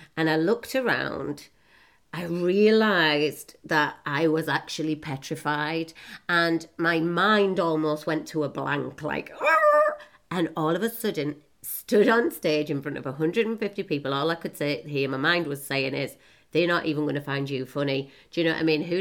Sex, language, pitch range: female, English, 150-205 Hz